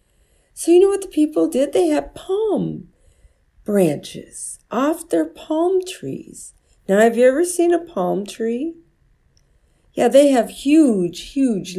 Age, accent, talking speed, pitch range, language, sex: 50-69, American, 145 wpm, 200-300 Hz, English, female